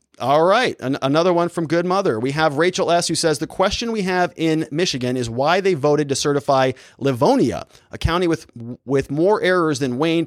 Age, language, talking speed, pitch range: 30-49, English, 205 wpm, 125-160 Hz